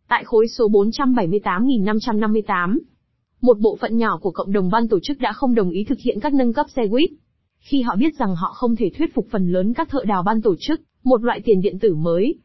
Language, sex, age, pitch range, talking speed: Vietnamese, female, 20-39, 205-260 Hz, 230 wpm